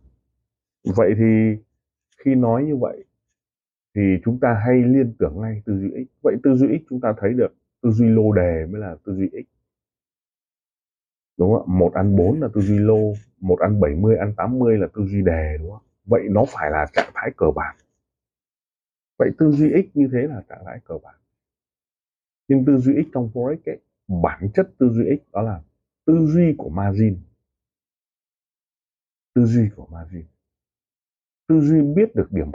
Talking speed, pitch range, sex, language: 185 wpm, 95-125 Hz, male, Vietnamese